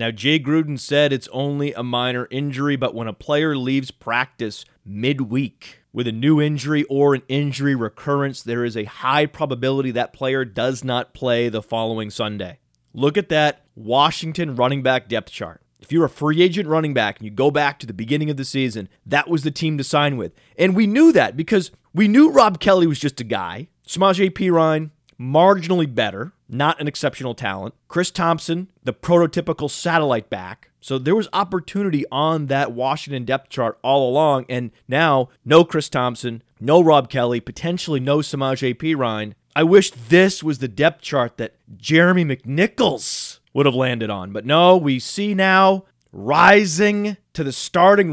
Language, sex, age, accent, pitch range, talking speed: English, male, 30-49, American, 125-165 Hz, 180 wpm